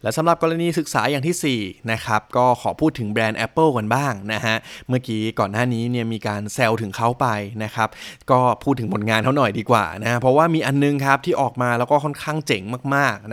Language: Thai